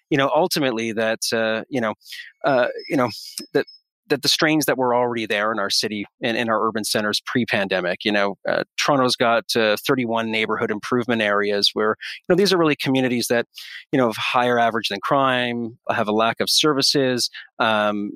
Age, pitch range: 30-49, 110-135 Hz